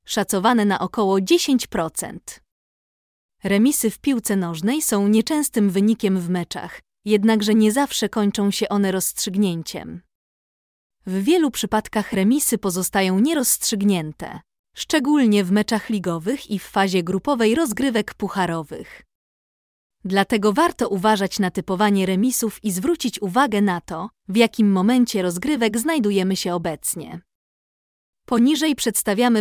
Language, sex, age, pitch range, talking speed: Polish, female, 20-39, 195-245 Hz, 115 wpm